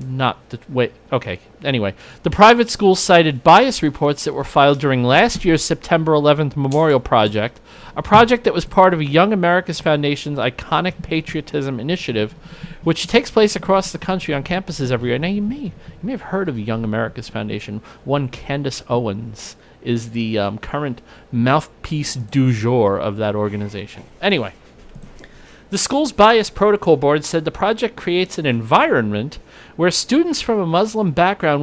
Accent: American